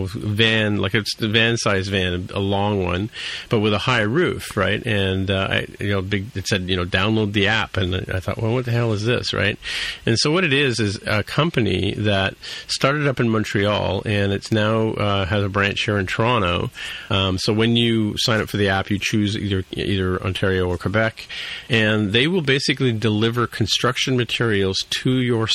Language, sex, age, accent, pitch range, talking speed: English, male, 40-59, American, 95-115 Hz, 205 wpm